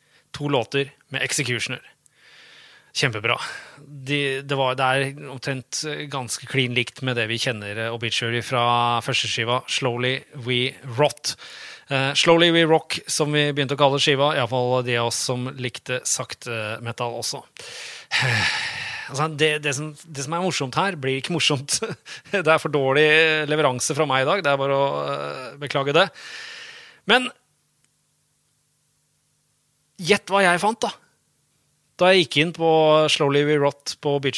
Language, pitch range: English, 130-160 Hz